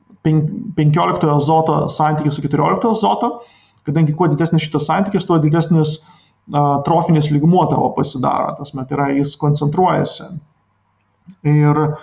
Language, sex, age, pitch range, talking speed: English, male, 30-49, 150-175 Hz, 135 wpm